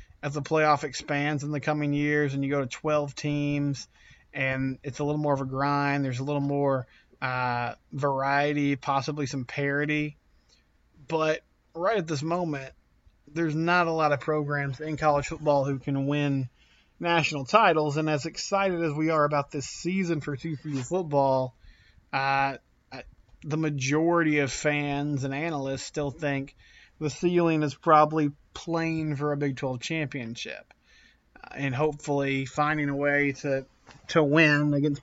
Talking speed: 160 wpm